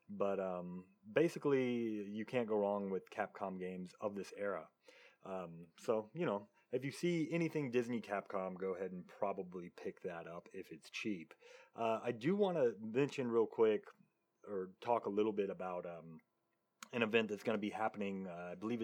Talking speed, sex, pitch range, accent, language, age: 185 wpm, male, 90-110 Hz, American, English, 30-49